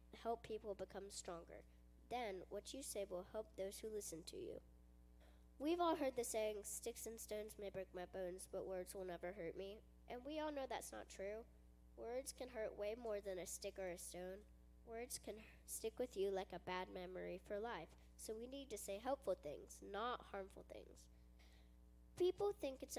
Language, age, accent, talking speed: English, 10-29, American, 195 wpm